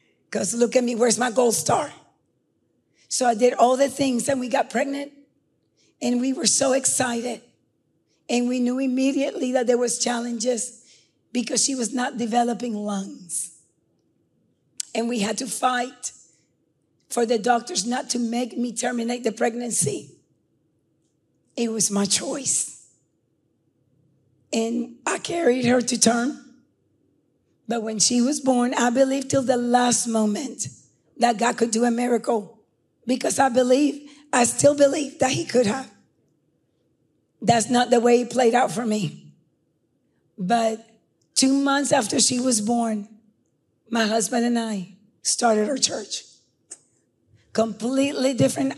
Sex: female